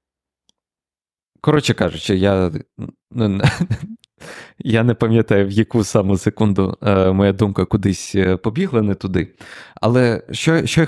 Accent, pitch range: native, 95-115 Hz